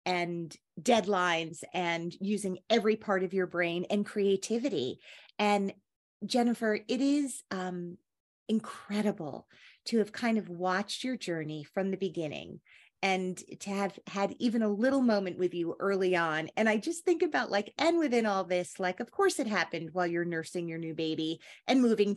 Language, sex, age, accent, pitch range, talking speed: English, female, 40-59, American, 175-215 Hz, 170 wpm